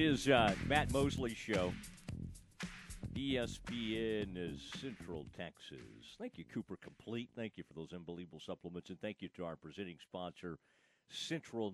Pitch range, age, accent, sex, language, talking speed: 85-105 Hz, 50-69, American, male, English, 145 wpm